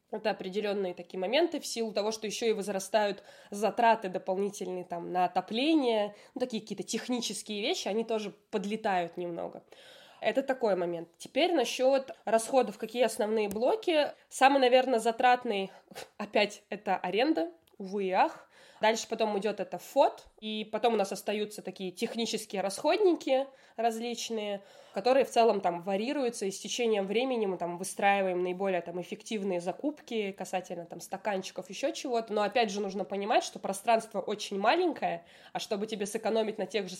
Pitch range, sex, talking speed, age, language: 195-235 Hz, female, 150 wpm, 20-39, Russian